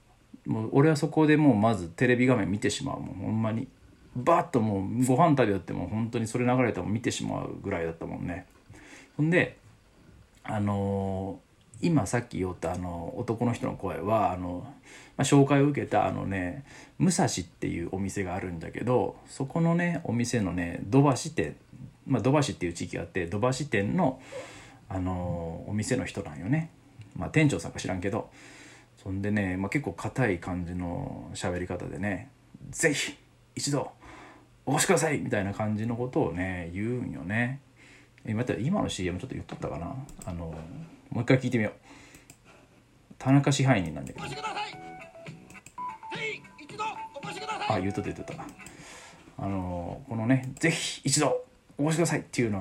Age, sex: 40-59, male